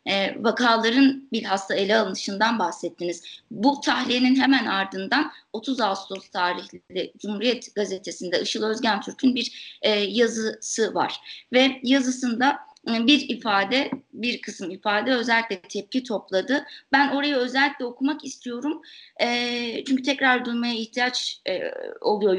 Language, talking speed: Turkish, 105 wpm